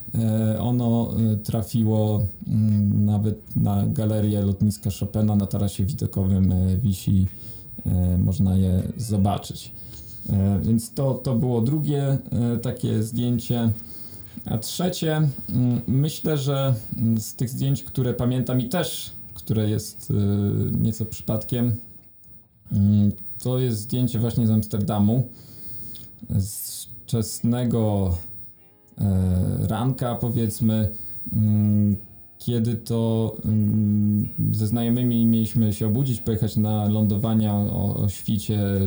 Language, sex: Polish, male